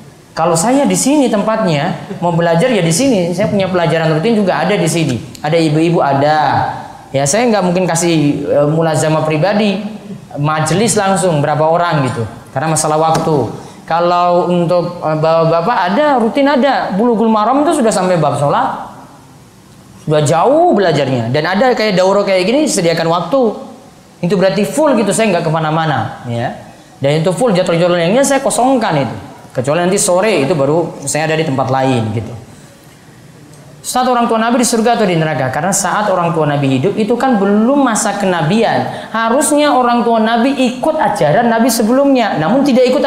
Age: 20-39